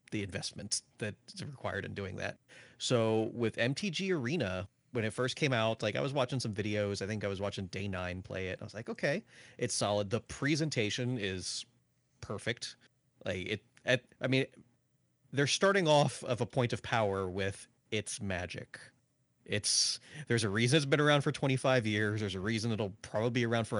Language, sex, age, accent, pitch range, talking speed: English, male, 30-49, American, 100-130 Hz, 190 wpm